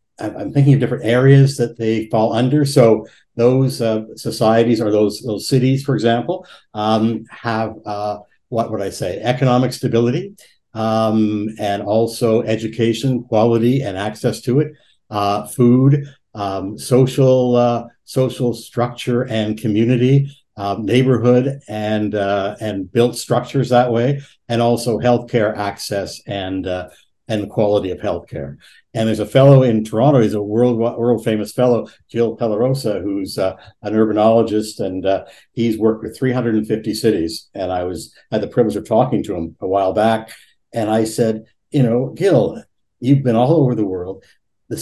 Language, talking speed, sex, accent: English, 155 wpm, male, American